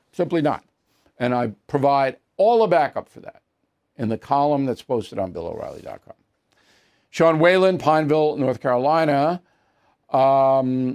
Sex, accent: male, American